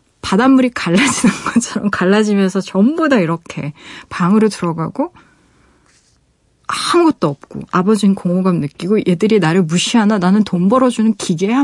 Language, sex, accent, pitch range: Korean, female, native, 180-240 Hz